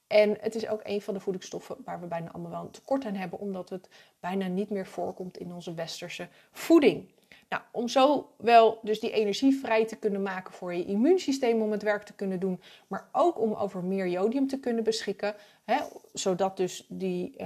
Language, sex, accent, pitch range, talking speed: Dutch, female, Dutch, 185-220 Hz, 195 wpm